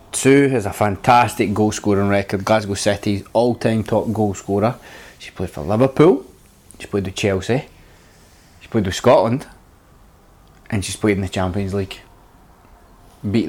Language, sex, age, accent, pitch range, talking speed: English, male, 20-39, British, 95-110 Hz, 145 wpm